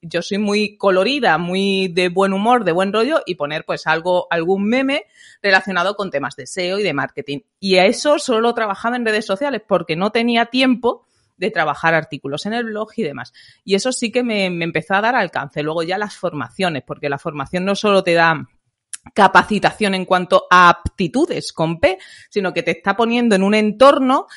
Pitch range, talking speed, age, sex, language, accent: 165-220 Hz, 200 wpm, 30-49, female, Spanish, Spanish